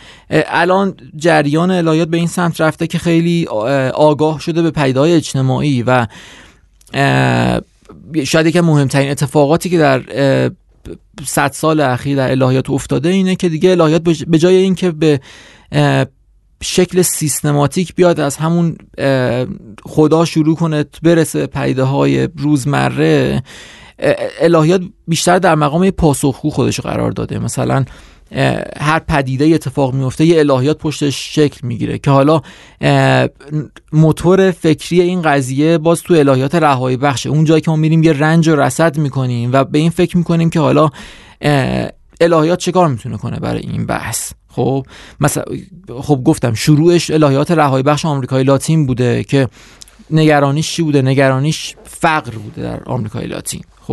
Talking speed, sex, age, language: 135 wpm, male, 30-49, Persian